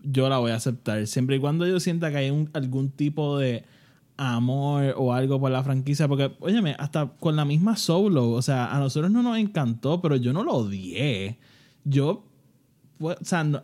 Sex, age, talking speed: male, 20-39, 190 wpm